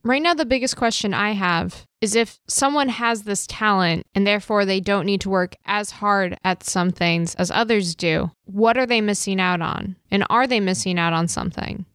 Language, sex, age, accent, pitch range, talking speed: English, female, 10-29, American, 195-230 Hz, 205 wpm